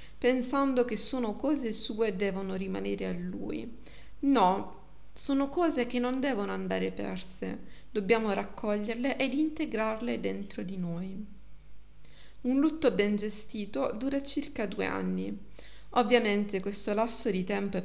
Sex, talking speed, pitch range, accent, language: female, 130 wpm, 190-260 Hz, native, Italian